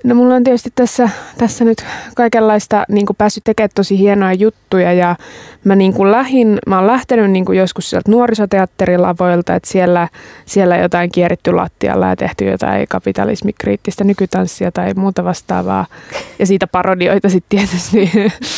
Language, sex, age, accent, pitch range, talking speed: Finnish, female, 20-39, native, 175-210 Hz, 140 wpm